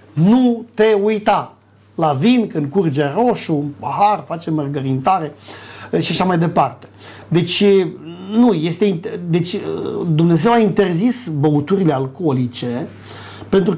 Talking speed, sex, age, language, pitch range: 120 wpm, male, 50-69, Romanian, 140-205 Hz